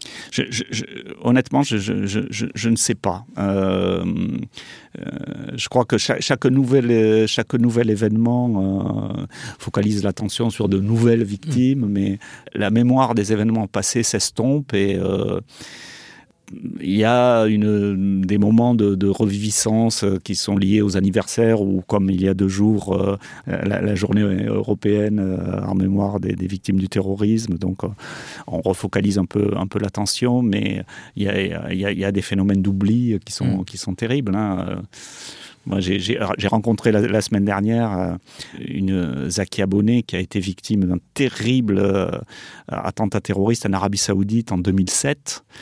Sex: male